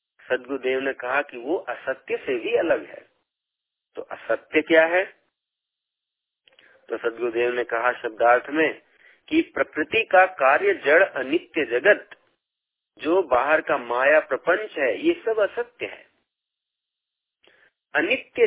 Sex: male